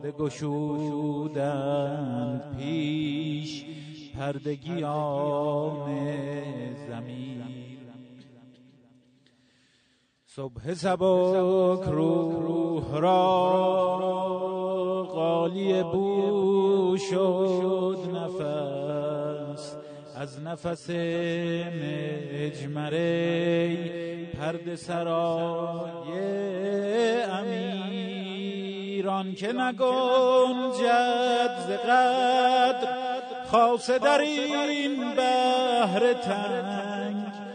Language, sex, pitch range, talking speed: Persian, male, 155-240 Hz, 50 wpm